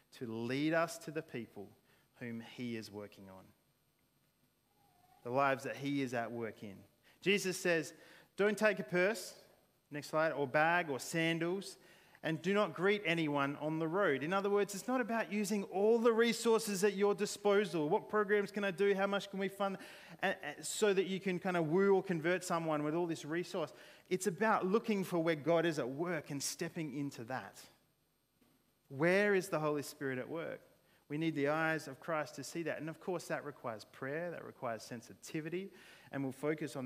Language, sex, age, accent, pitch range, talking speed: English, male, 30-49, Australian, 130-185 Hz, 190 wpm